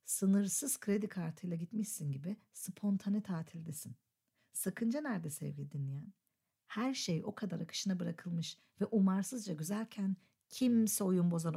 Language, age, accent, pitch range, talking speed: Turkish, 50-69, native, 165-220 Hz, 120 wpm